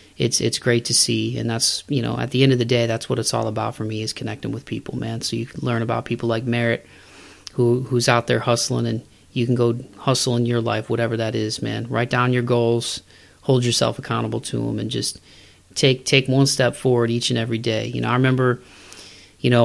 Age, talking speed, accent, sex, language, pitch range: 30-49, 240 wpm, American, male, English, 110-120 Hz